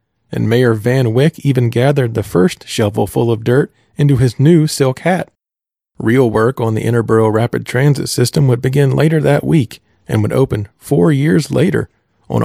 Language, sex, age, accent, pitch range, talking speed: English, male, 40-59, American, 110-140 Hz, 180 wpm